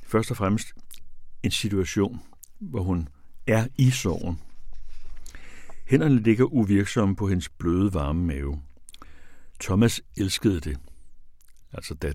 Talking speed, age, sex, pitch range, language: 110 wpm, 60-79, male, 75-110 Hz, Danish